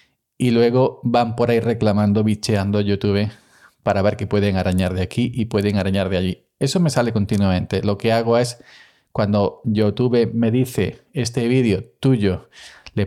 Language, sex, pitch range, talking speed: Spanish, male, 105-125 Hz, 165 wpm